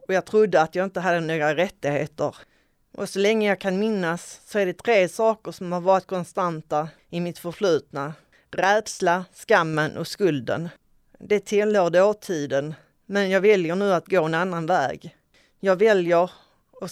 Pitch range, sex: 160-195 Hz, female